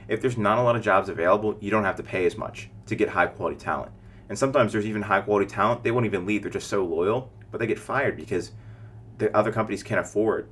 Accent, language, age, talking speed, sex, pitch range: American, English, 30-49, 255 wpm, male, 105-115 Hz